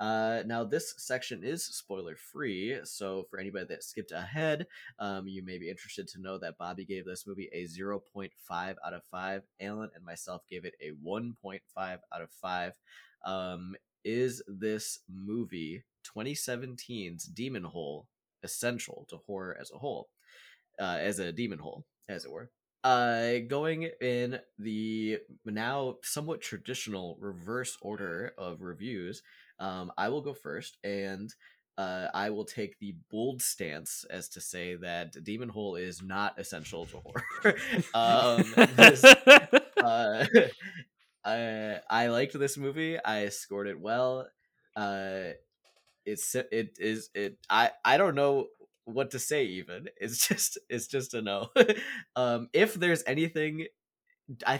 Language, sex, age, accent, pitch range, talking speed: English, male, 20-39, American, 100-130 Hz, 145 wpm